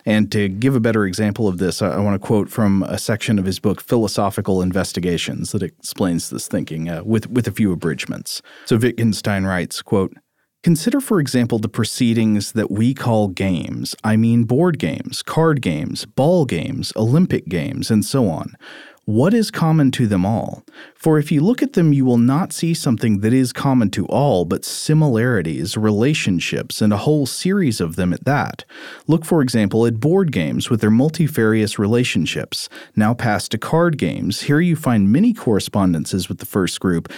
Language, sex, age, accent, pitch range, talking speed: English, male, 40-59, American, 105-145 Hz, 180 wpm